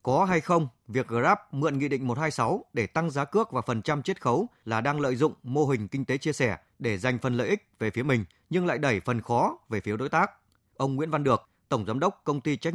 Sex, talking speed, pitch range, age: male, 260 wpm, 120-155 Hz, 20-39